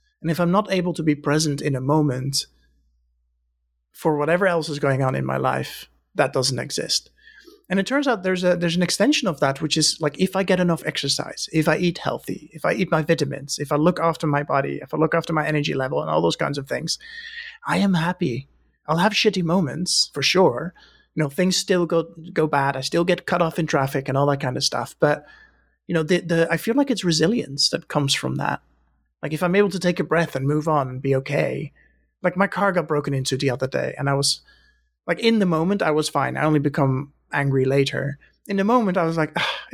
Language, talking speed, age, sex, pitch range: English, 240 wpm, 30-49, male, 140-180 Hz